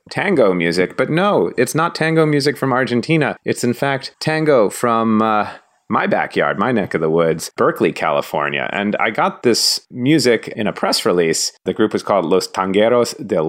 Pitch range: 95-120 Hz